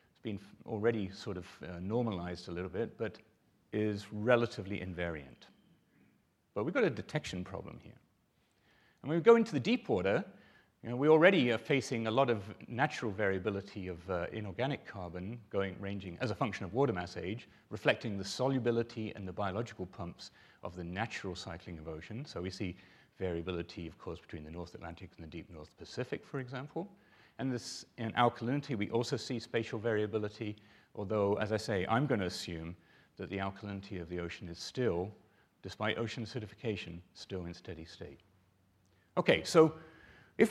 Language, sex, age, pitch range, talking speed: English, male, 40-59, 95-120 Hz, 175 wpm